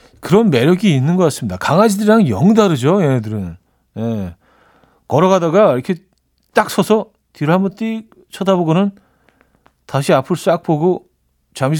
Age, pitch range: 40-59, 115-160 Hz